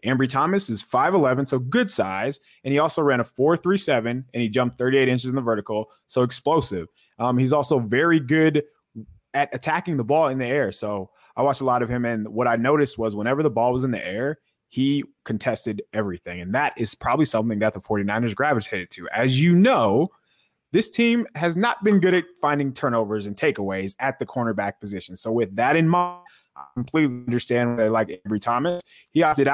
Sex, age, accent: male, 20-39, American